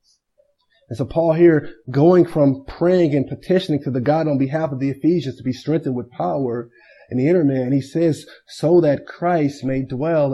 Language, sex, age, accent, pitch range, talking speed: English, male, 20-39, American, 150-195 Hz, 190 wpm